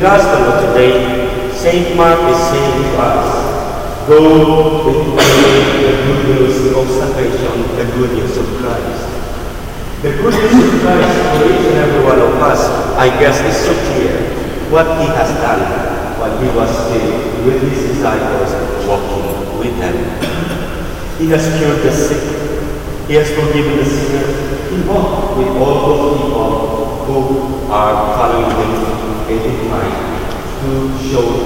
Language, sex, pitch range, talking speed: English, male, 120-175 Hz, 145 wpm